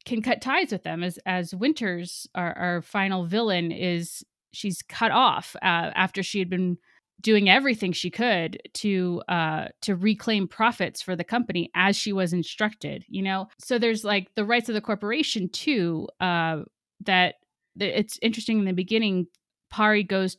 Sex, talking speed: female, 170 wpm